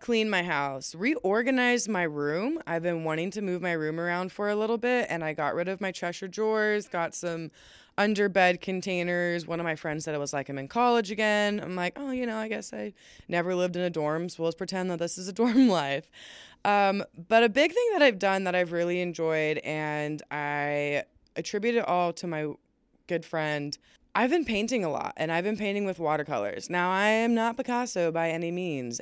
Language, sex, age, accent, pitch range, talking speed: English, female, 20-39, American, 160-220 Hz, 215 wpm